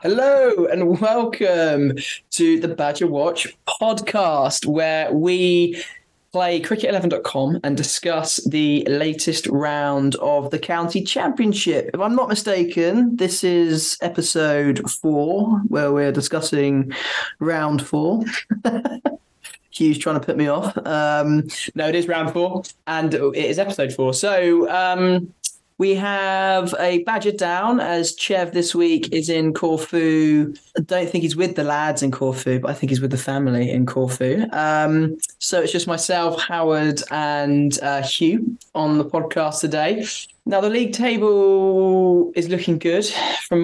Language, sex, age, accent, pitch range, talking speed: English, male, 20-39, British, 150-185 Hz, 145 wpm